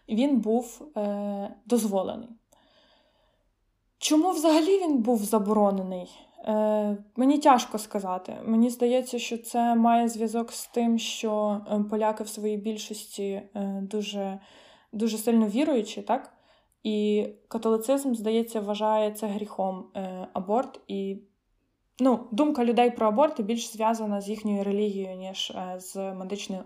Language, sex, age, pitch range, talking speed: Ukrainian, female, 20-39, 205-240 Hz, 120 wpm